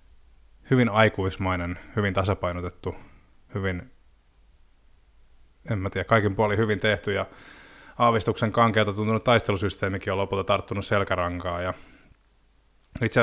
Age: 20-39